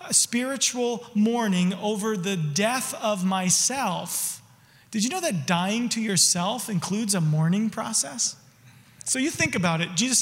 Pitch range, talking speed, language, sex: 190-245 Hz, 140 wpm, English, male